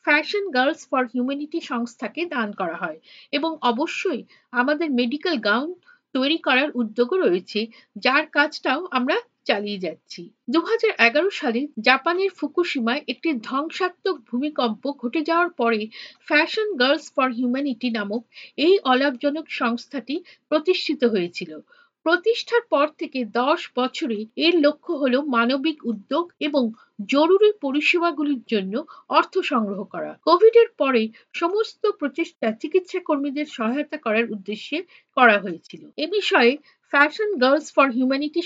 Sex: female